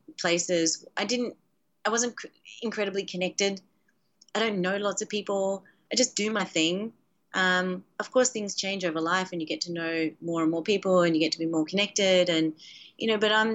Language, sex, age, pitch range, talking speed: English, female, 30-49, 170-200 Hz, 205 wpm